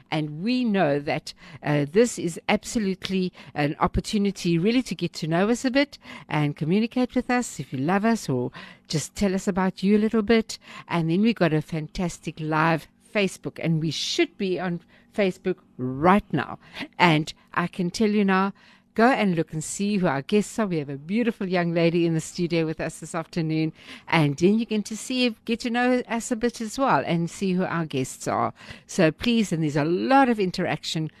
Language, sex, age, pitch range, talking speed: English, female, 60-79, 150-215 Hz, 205 wpm